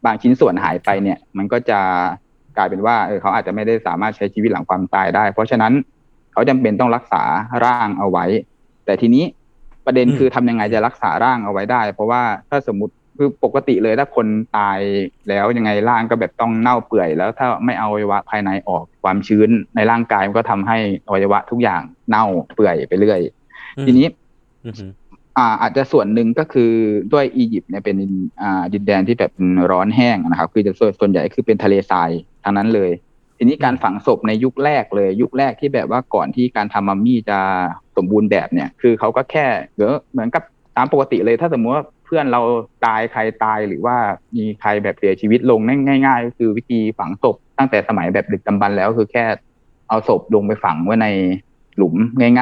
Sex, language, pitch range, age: male, Thai, 100-125 Hz, 20-39